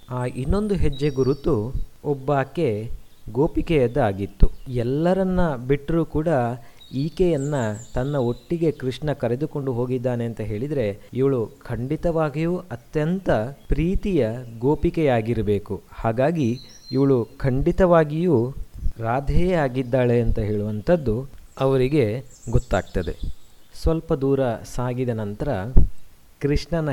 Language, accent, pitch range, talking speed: Kannada, native, 115-150 Hz, 80 wpm